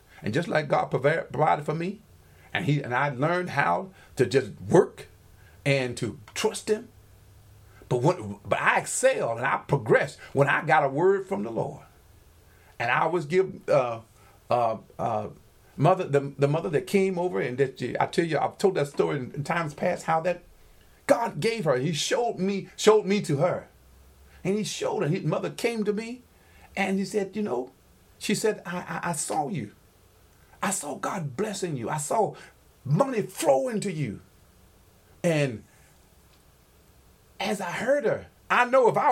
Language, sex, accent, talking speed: English, male, American, 180 wpm